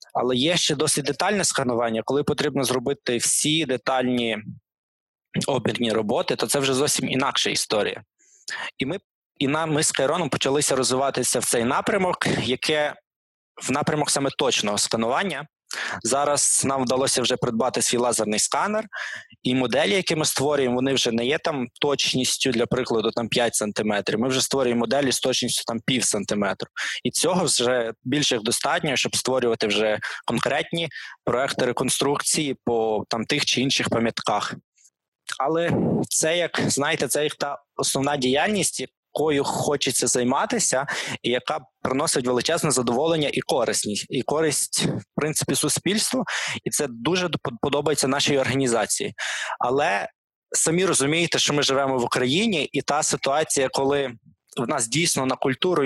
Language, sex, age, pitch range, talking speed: Ukrainian, male, 20-39, 125-150 Hz, 145 wpm